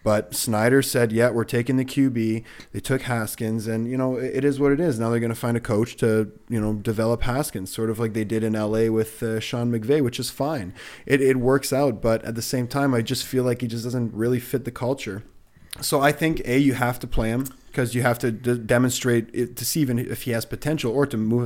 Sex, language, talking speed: male, English, 255 wpm